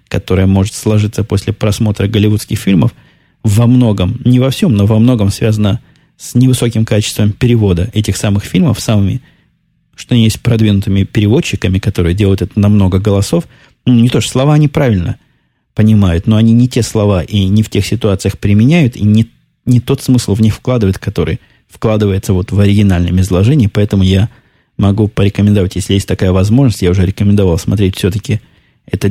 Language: Russian